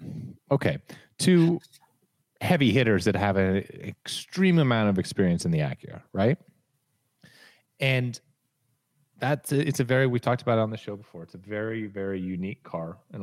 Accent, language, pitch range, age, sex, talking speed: American, English, 90-125 Hz, 30-49, male, 165 wpm